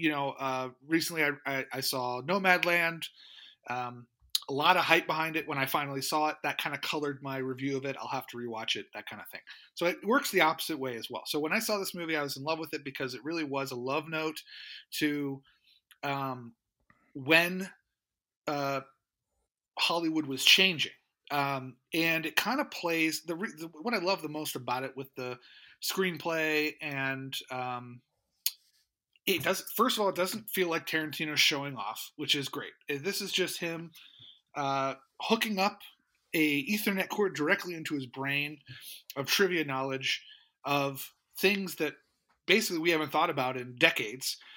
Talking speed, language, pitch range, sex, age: 180 wpm, English, 135-170 Hz, male, 30-49